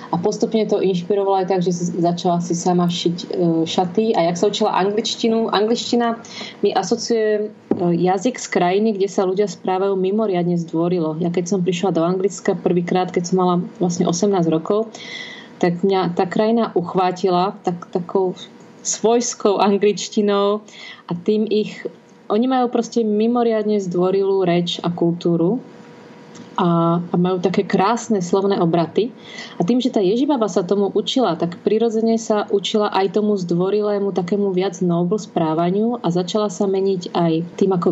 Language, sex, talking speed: Slovak, female, 150 wpm